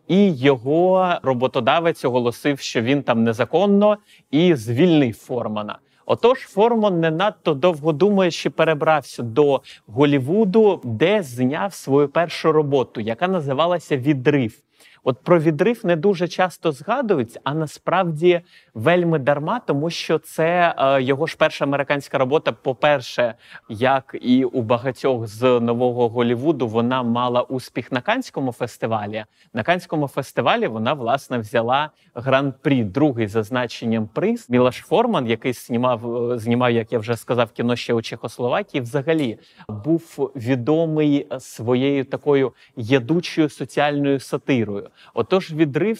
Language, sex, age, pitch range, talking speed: Ukrainian, male, 30-49, 125-165 Hz, 125 wpm